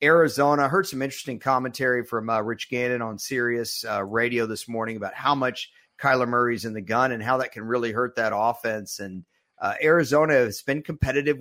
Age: 50-69